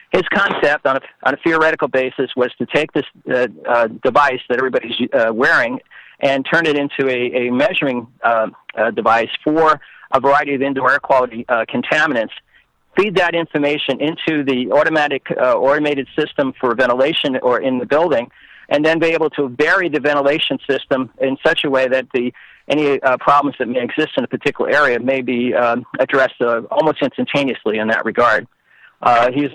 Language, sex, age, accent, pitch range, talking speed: English, male, 50-69, American, 120-145 Hz, 180 wpm